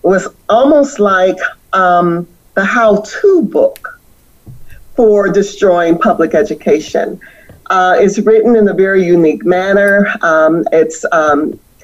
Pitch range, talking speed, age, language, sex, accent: 175-205 Hz, 110 wpm, 50-69, English, female, American